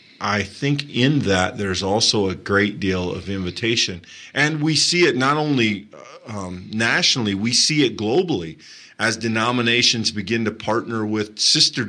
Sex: male